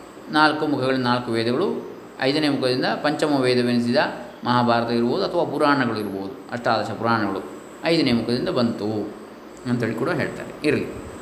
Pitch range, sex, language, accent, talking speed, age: 115-150 Hz, male, Kannada, native, 120 wpm, 20-39